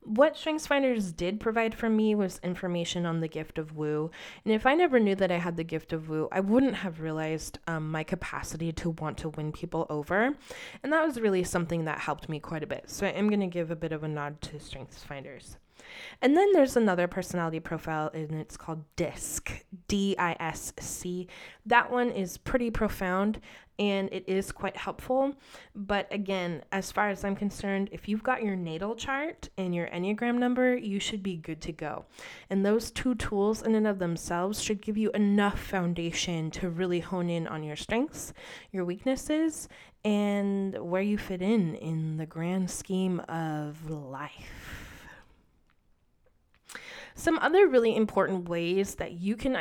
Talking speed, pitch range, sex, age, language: 180 wpm, 165-215 Hz, female, 20-39, English